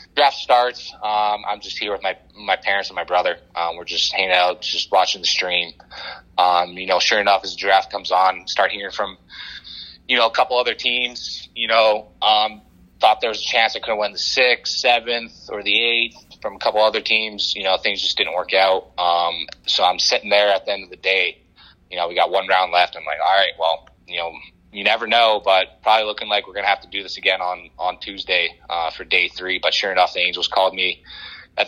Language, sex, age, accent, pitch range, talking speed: English, male, 30-49, American, 90-110 Hz, 240 wpm